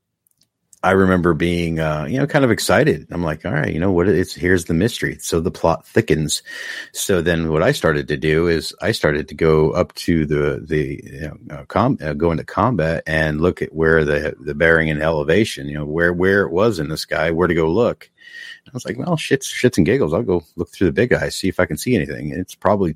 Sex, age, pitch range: male, 50-69, 75-95 Hz